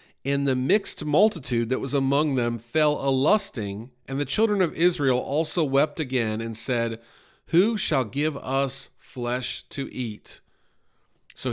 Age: 40-59